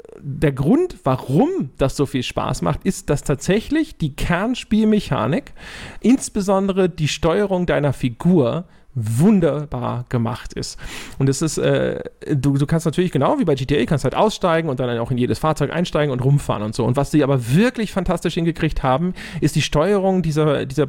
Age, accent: 40-59, German